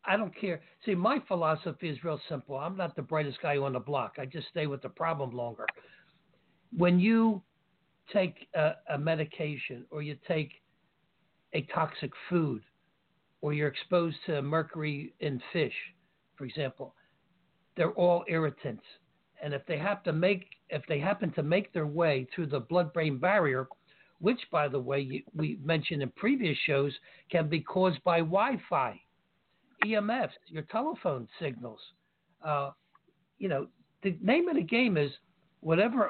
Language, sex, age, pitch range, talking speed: English, male, 60-79, 150-190 Hz, 155 wpm